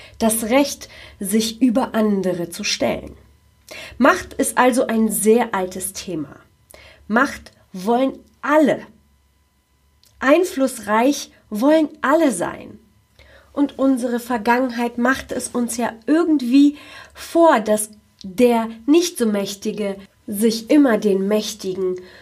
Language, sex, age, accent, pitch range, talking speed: German, female, 40-59, German, 195-270 Hz, 100 wpm